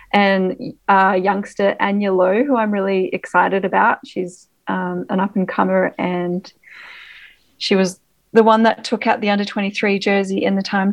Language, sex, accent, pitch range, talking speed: English, female, Australian, 185-210 Hz, 165 wpm